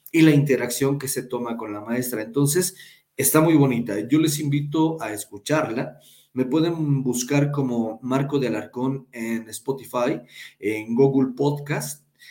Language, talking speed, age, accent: Spanish, 145 wpm, 40-59, Mexican